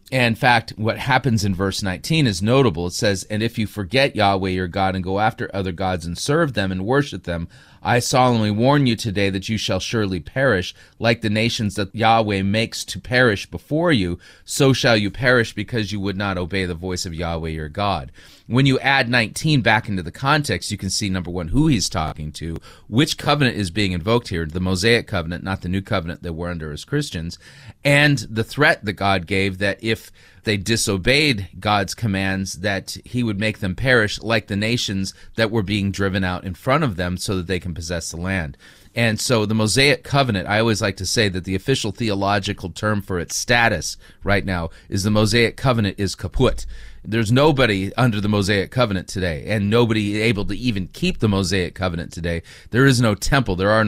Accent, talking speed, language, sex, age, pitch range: American, 205 wpm, English, male, 30-49, 95-115 Hz